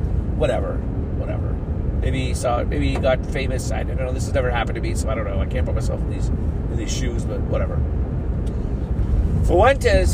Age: 40-59